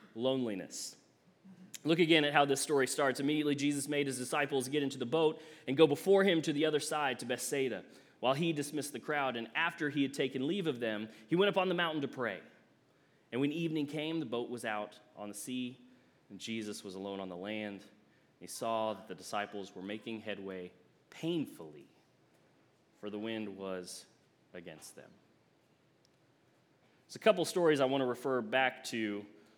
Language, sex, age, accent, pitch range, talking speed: English, male, 30-49, American, 120-180 Hz, 185 wpm